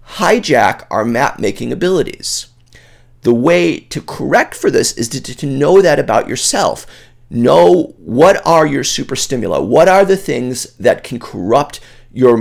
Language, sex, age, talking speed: English, male, 40-59, 150 wpm